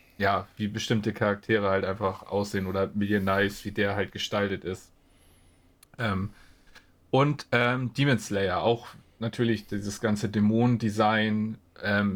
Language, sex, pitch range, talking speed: German, male, 100-110 Hz, 130 wpm